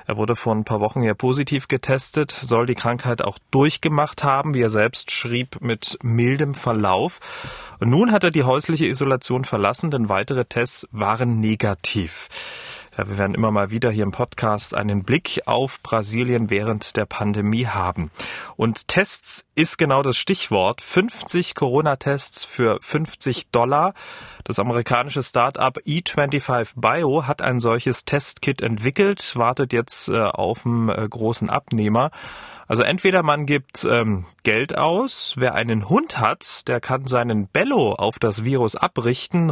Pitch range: 115-150 Hz